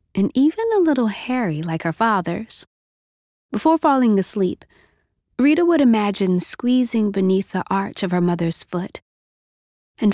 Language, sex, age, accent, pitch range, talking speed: English, female, 20-39, American, 170-240 Hz, 135 wpm